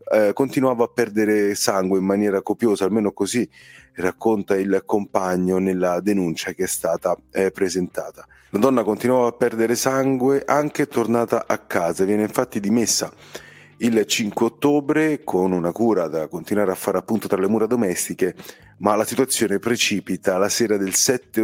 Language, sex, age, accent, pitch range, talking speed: Italian, male, 30-49, native, 95-115 Hz, 155 wpm